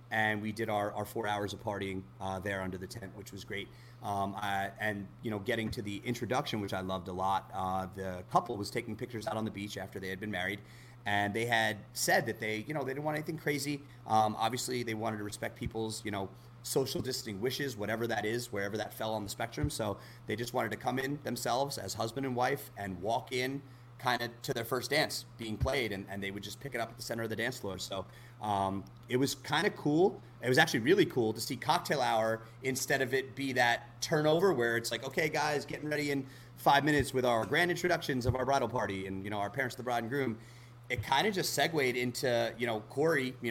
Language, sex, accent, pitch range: English, male, American, 110-130 Hz